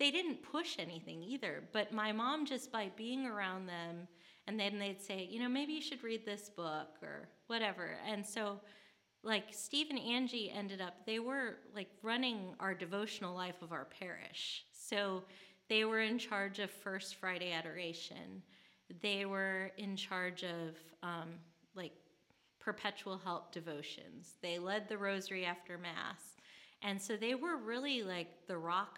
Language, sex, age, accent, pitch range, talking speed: English, female, 30-49, American, 180-220 Hz, 160 wpm